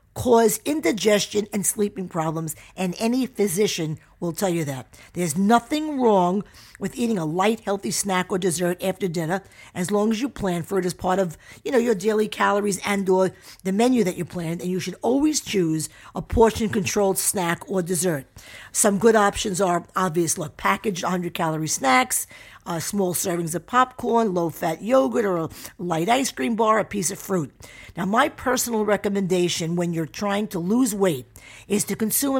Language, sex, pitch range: English, female, 170-220 Hz